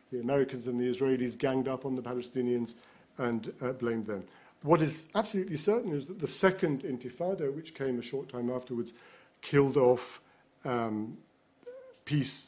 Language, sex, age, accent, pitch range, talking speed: English, male, 50-69, British, 125-150 Hz, 160 wpm